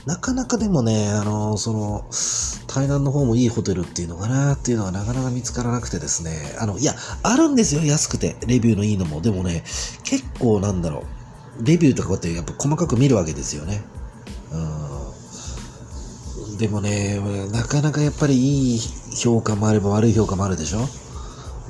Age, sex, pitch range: 40-59, male, 85-125 Hz